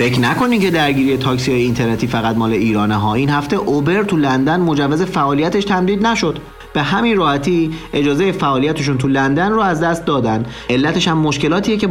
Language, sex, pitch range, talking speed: Persian, male, 115-155 Hz, 175 wpm